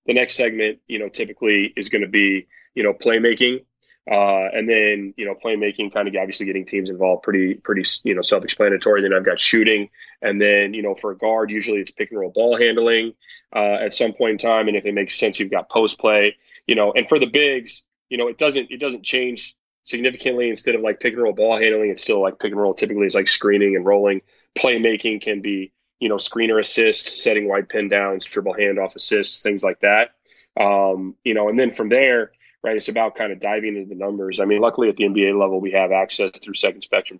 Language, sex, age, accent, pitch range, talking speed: English, male, 20-39, American, 100-120 Hz, 230 wpm